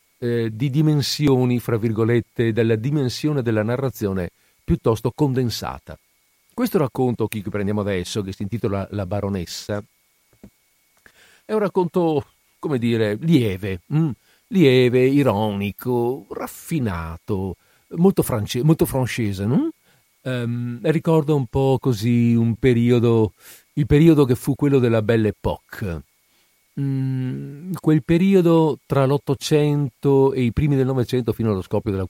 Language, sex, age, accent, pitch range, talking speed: Italian, male, 50-69, native, 110-155 Hz, 120 wpm